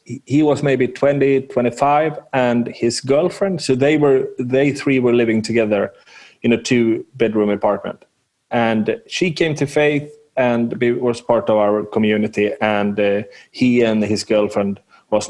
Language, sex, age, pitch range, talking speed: English, male, 30-49, 110-135 Hz, 155 wpm